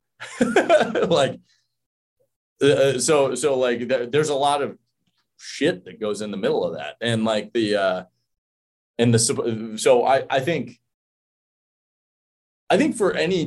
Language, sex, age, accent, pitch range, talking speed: English, male, 30-49, American, 105-150 Hz, 145 wpm